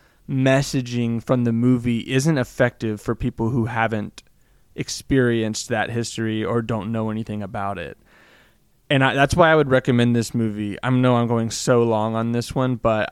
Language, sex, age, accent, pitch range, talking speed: English, male, 20-39, American, 115-140 Hz, 170 wpm